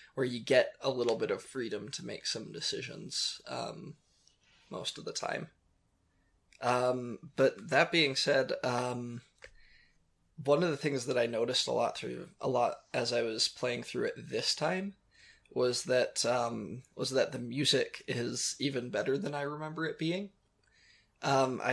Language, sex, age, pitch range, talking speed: English, male, 20-39, 120-145 Hz, 165 wpm